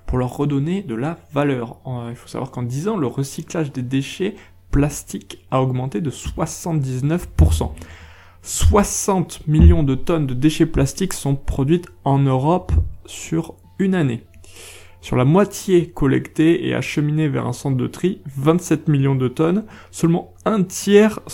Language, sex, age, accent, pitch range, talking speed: French, male, 20-39, French, 100-165 Hz, 150 wpm